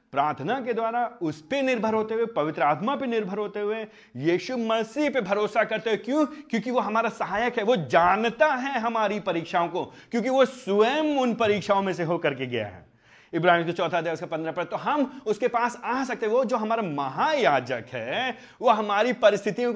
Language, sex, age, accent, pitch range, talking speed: Hindi, male, 30-49, native, 170-250 Hz, 195 wpm